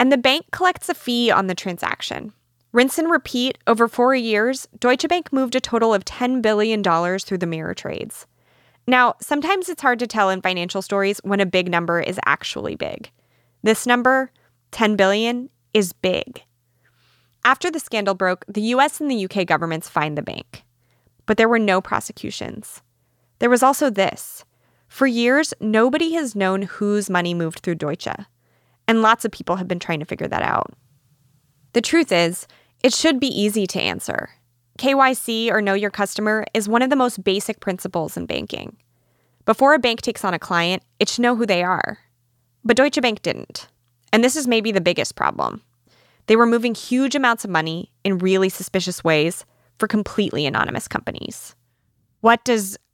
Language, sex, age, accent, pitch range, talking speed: English, female, 20-39, American, 175-245 Hz, 175 wpm